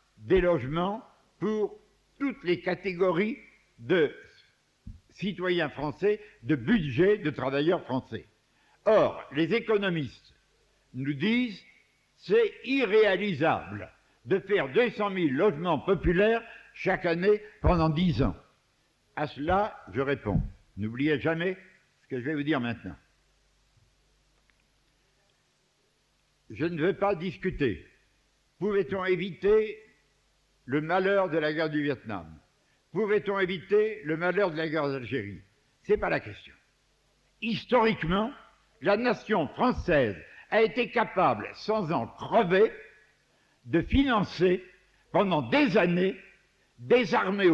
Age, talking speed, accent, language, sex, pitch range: 60-79, 110 wpm, French, French, male, 150-215 Hz